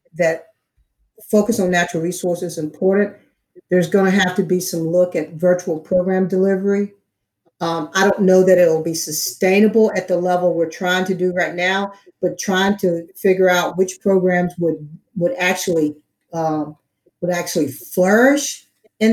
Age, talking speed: 50-69, 160 wpm